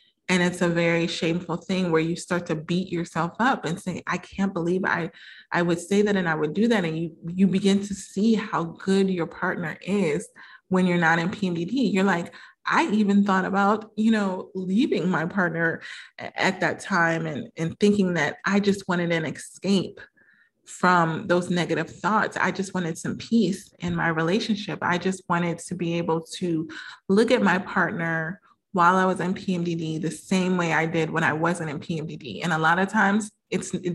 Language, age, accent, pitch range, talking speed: English, 30-49, American, 165-195 Hz, 200 wpm